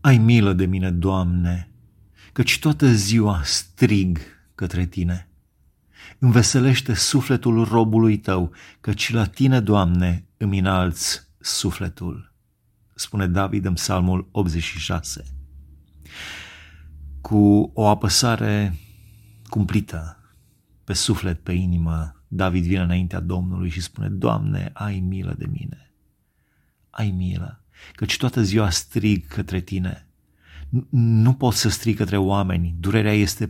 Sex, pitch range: male, 90-115 Hz